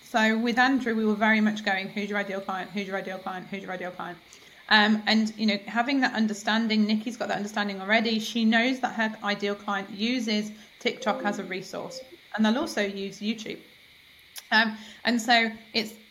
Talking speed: 195 wpm